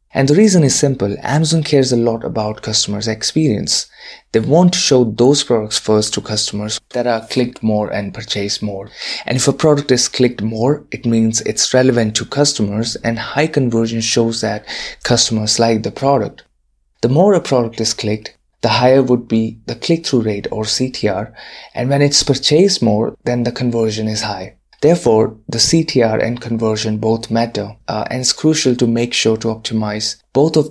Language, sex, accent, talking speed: English, male, Indian, 180 wpm